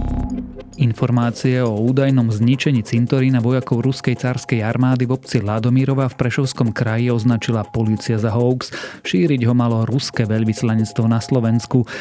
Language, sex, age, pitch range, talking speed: Slovak, male, 30-49, 110-130 Hz, 130 wpm